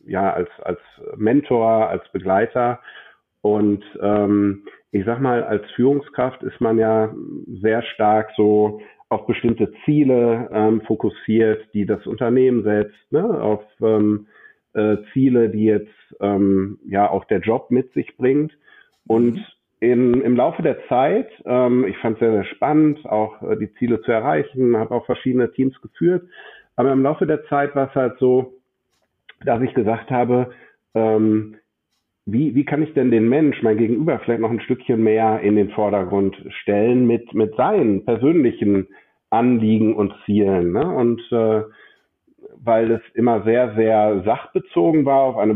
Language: German